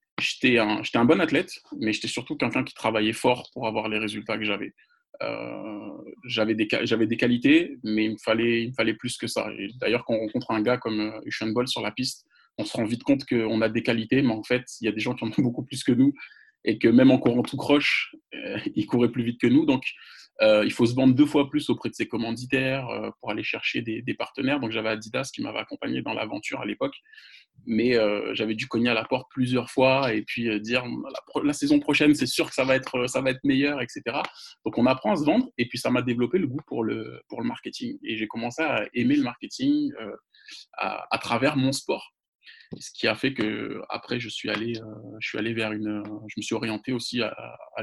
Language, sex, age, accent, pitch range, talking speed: French, male, 20-39, French, 110-140 Hz, 250 wpm